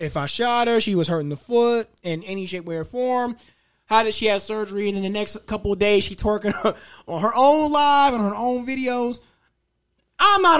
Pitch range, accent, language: 165-220 Hz, American, English